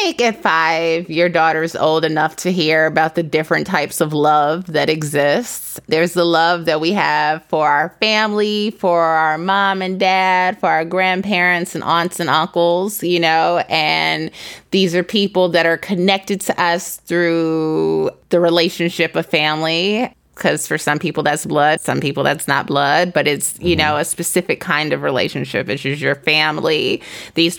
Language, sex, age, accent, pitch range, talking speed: English, female, 20-39, American, 160-190 Hz, 175 wpm